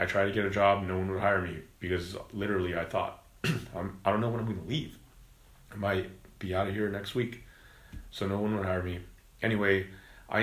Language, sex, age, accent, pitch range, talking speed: English, male, 30-49, American, 95-110 Hz, 225 wpm